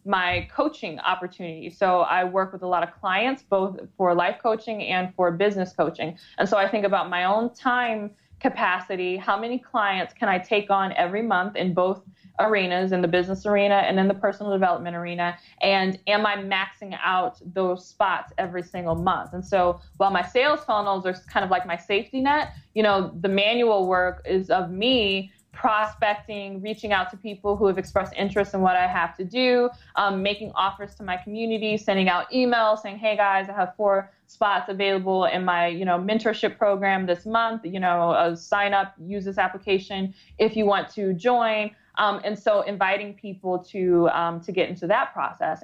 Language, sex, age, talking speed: English, female, 20-39, 190 wpm